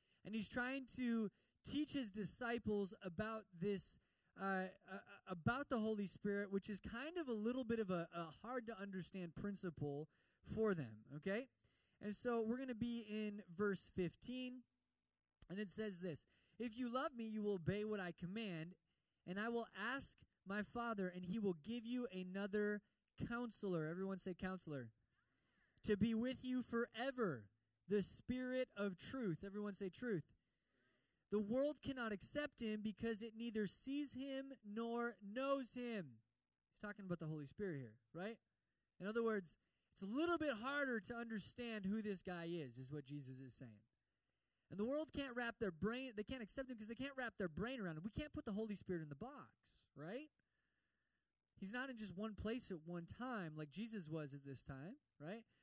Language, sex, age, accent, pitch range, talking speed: English, male, 20-39, American, 180-235 Hz, 180 wpm